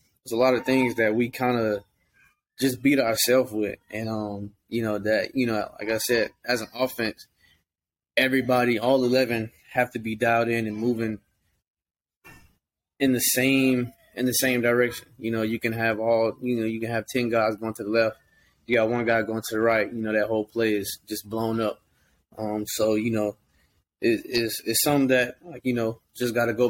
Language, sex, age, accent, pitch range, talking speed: English, male, 20-39, American, 105-120 Hz, 210 wpm